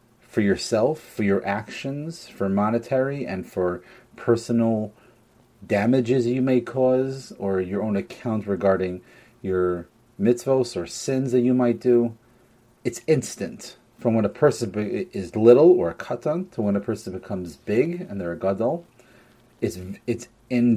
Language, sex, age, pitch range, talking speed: English, male, 30-49, 100-125 Hz, 145 wpm